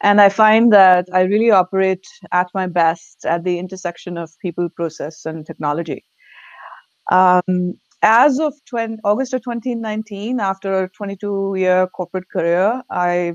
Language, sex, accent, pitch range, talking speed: English, female, Indian, 175-210 Hz, 140 wpm